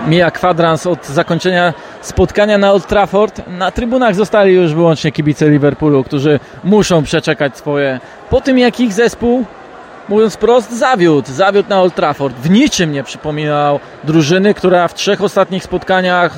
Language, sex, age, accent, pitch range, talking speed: Polish, male, 20-39, native, 160-215 Hz, 150 wpm